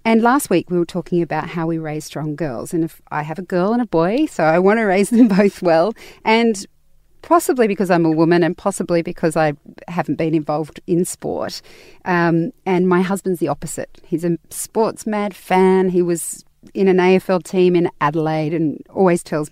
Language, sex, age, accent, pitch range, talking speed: English, female, 40-59, Australian, 155-190 Hz, 200 wpm